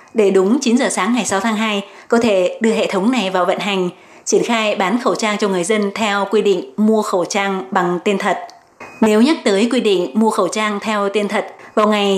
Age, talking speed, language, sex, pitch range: 20-39, 235 wpm, Vietnamese, female, 190-220 Hz